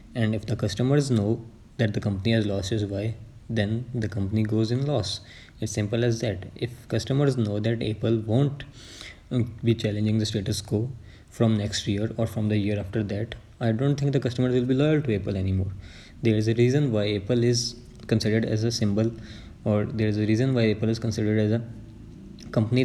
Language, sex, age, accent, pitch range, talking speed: English, male, 20-39, Indian, 105-120 Hz, 200 wpm